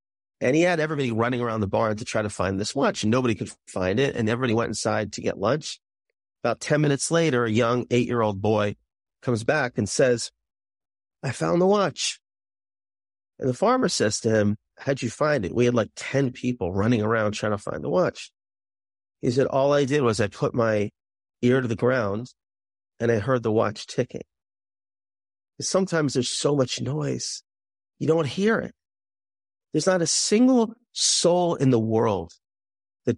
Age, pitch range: 40-59, 100-140 Hz